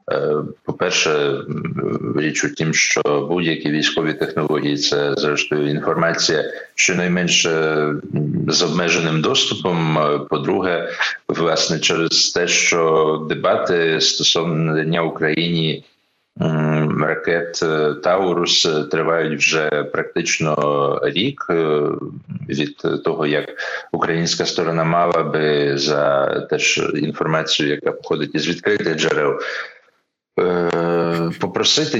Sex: male